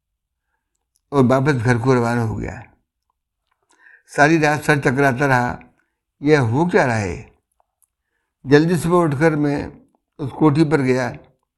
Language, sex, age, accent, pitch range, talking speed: Hindi, male, 60-79, native, 120-145 Hz, 135 wpm